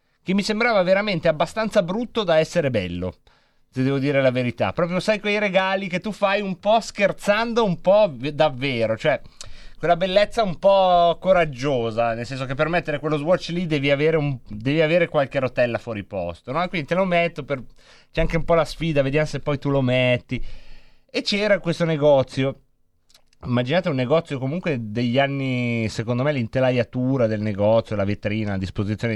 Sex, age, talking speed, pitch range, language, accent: male, 30-49, 170 wpm, 115-175 Hz, Italian, native